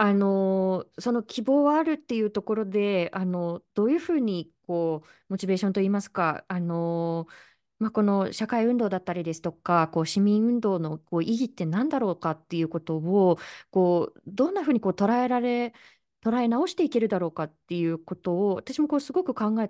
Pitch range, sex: 175-270 Hz, female